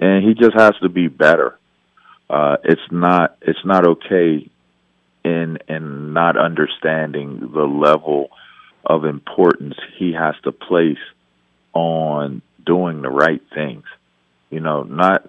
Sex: male